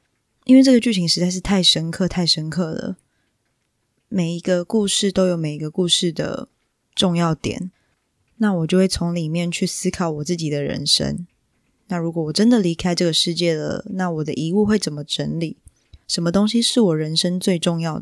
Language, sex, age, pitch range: Chinese, female, 20-39, 155-185 Hz